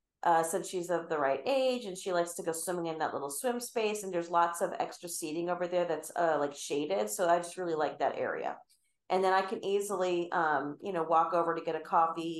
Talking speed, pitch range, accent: 245 wpm, 170-220 Hz, American